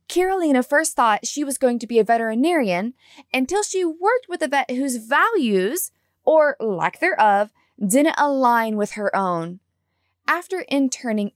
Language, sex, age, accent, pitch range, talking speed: English, female, 20-39, American, 215-285 Hz, 150 wpm